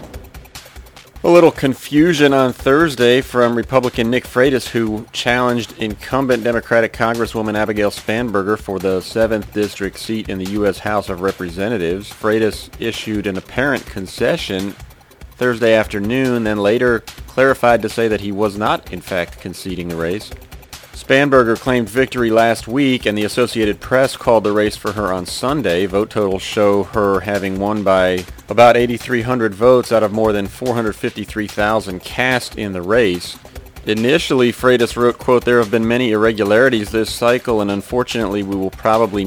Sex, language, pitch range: male, English, 100-120 Hz